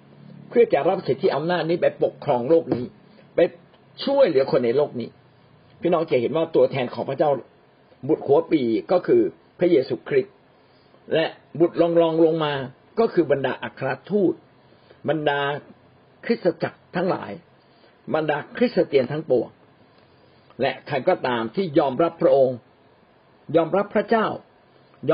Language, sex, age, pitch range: Thai, male, 60-79, 140-190 Hz